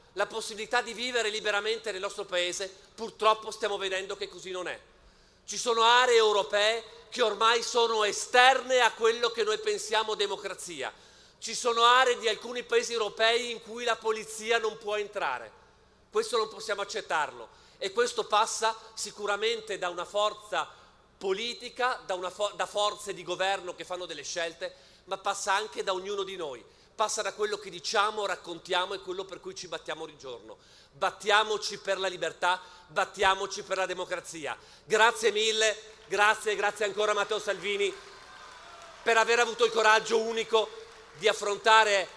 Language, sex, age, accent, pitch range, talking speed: Italian, male, 40-59, native, 195-230 Hz, 155 wpm